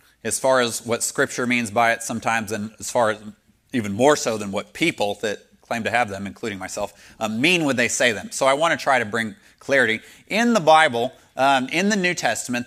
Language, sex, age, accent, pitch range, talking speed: English, male, 30-49, American, 115-150 Hz, 225 wpm